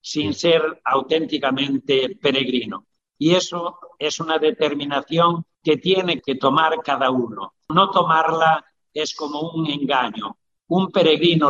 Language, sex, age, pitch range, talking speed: Spanish, male, 60-79, 135-160 Hz, 120 wpm